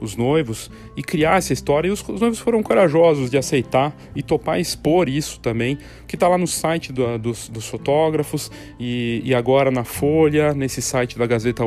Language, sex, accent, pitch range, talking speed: Portuguese, male, Brazilian, 115-145 Hz, 190 wpm